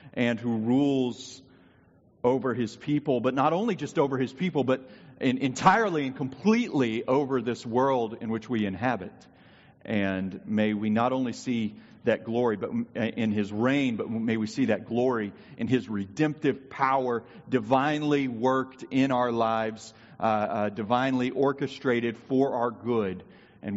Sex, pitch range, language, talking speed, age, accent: male, 110-140 Hz, English, 150 wpm, 40-59, American